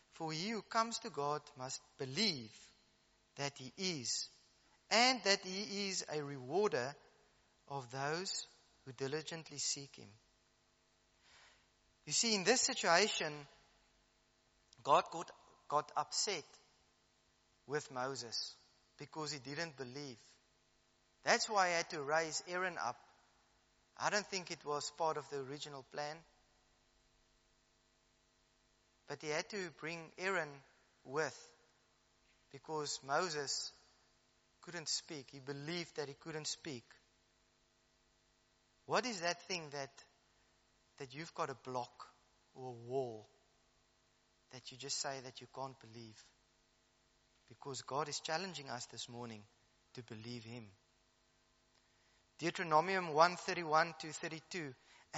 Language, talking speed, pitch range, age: English, 115 wpm, 130-175 Hz, 30-49